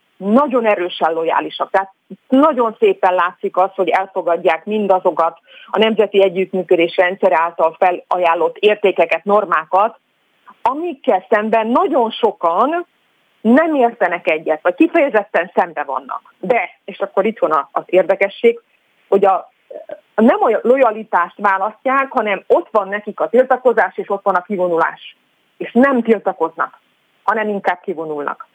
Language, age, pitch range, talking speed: Hungarian, 30-49, 185-245 Hz, 120 wpm